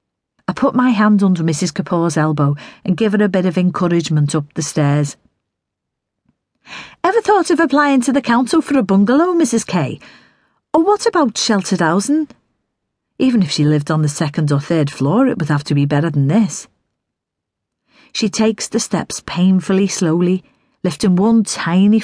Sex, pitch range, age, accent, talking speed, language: female, 165-235 Hz, 40-59, British, 165 wpm, English